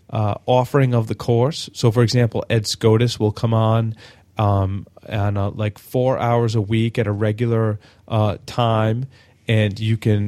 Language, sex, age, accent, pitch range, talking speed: English, male, 30-49, American, 105-125 Hz, 165 wpm